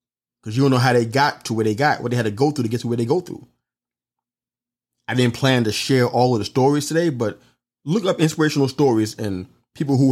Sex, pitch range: male, 110-145 Hz